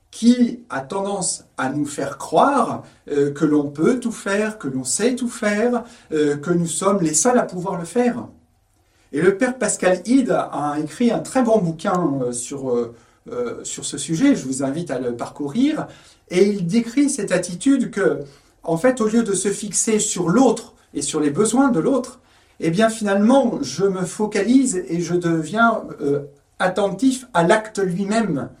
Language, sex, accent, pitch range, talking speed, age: French, male, French, 155-225 Hz, 180 wpm, 40-59